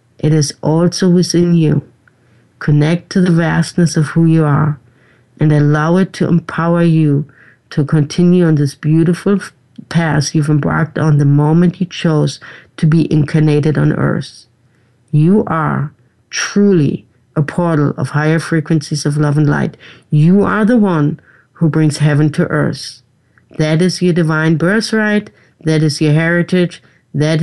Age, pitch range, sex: 60-79, 150-175 Hz, female